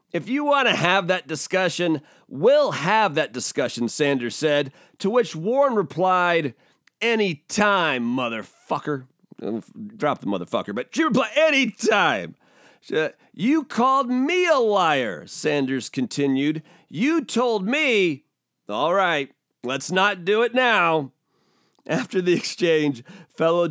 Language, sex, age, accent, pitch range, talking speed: English, male, 40-59, American, 160-240 Hz, 120 wpm